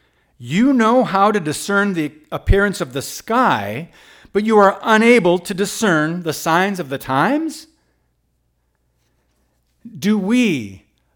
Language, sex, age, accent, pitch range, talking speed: English, male, 50-69, American, 125-185 Hz, 125 wpm